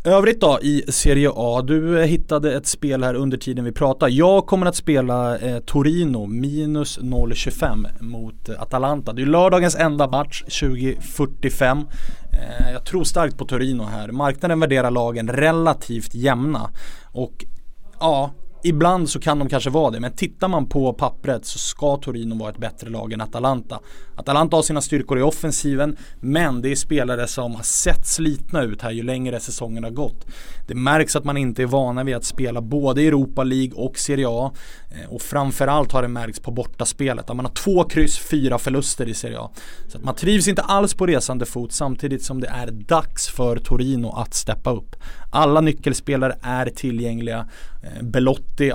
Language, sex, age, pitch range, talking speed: English, male, 20-39, 120-150 Hz, 175 wpm